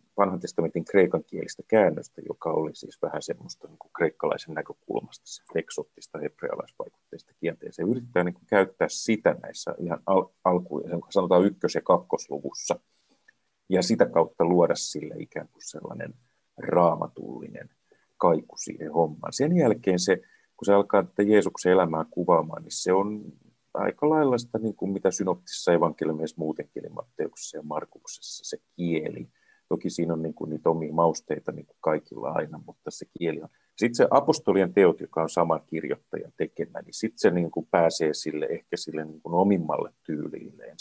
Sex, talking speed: male, 150 wpm